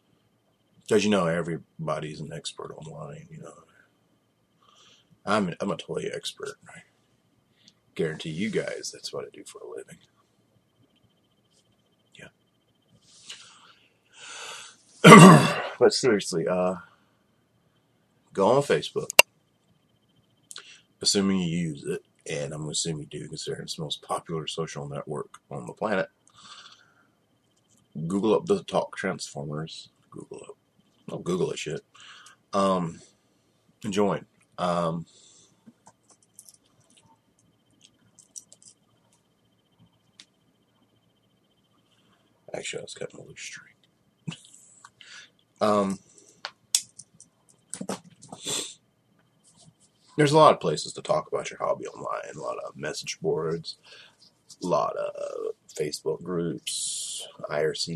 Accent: American